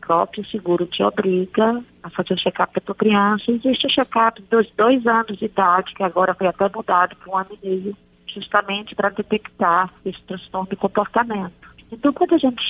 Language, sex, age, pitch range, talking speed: Portuguese, female, 40-59, 190-240 Hz, 190 wpm